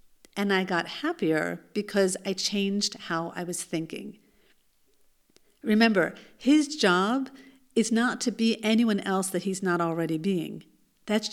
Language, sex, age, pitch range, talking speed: English, female, 50-69, 185-255 Hz, 140 wpm